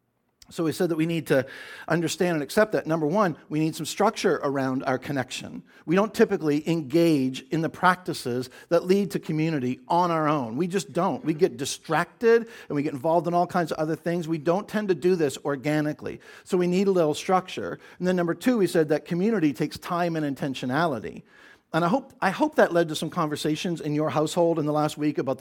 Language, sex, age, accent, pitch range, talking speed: English, male, 50-69, American, 130-175 Hz, 220 wpm